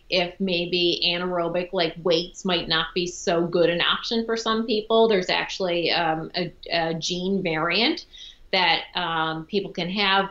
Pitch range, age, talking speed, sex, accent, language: 170-195 Hz, 30-49, 155 wpm, female, American, English